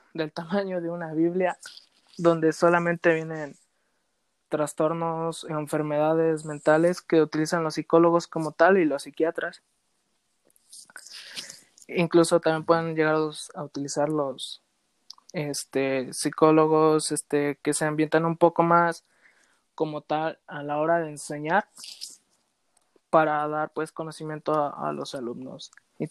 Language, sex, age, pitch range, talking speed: Spanish, male, 20-39, 155-170 Hz, 120 wpm